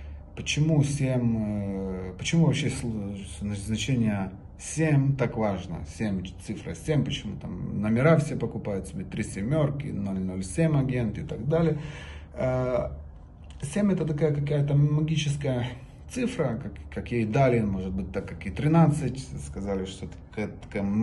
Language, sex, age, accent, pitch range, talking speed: Russian, male, 30-49, native, 95-145 Hz, 130 wpm